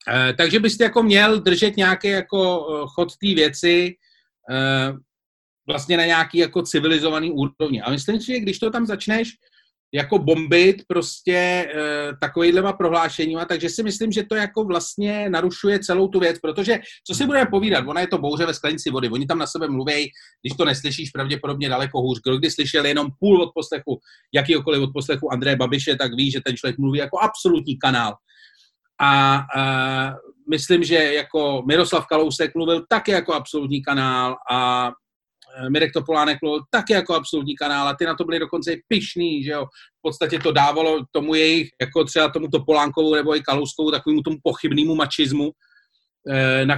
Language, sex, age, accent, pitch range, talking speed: Czech, male, 30-49, native, 135-175 Hz, 170 wpm